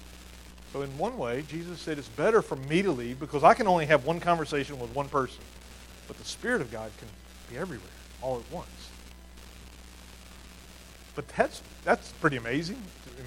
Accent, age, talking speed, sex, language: American, 40-59, 175 wpm, male, English